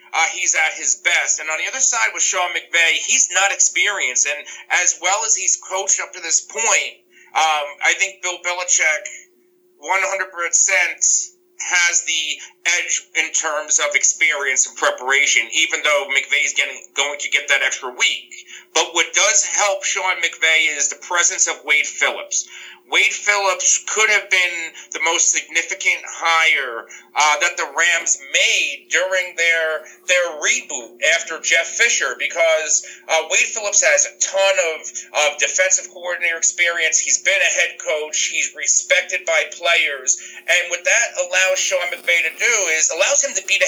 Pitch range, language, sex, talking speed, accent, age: 165-235 Hz, English, male, 165 wpm, American, 40-59